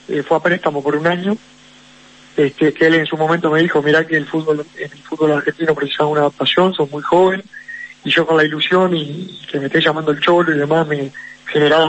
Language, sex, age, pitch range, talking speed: Spanish, male, 30-49, 150-170 Hz, 225 wpm